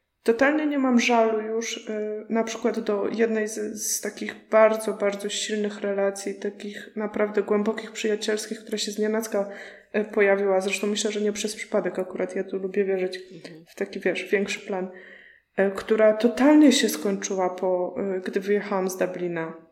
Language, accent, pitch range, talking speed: Polish, native, 195-225 Hz, 150 wpm